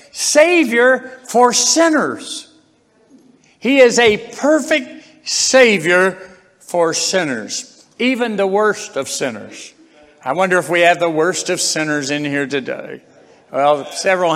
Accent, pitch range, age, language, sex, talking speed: American, 150-240 Hz, 60-79, English, male, 120 wpm